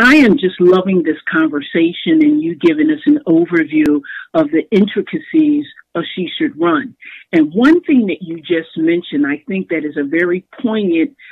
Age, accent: 50-69, American